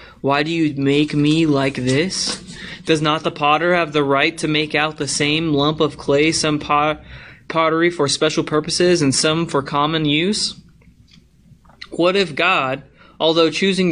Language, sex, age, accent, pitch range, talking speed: English, male, 20-39, American, 140-170 Hz, 160 wpm